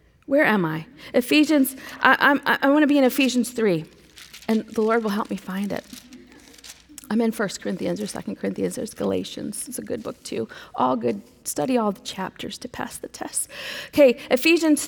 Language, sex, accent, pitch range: English, female, American, 235-300 Hz